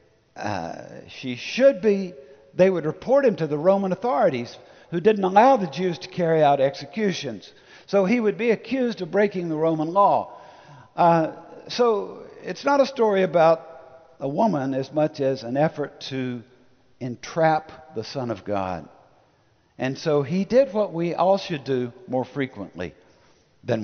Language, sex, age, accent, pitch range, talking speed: English, male, 60-79, American, 140-210 Hz, 160 wpm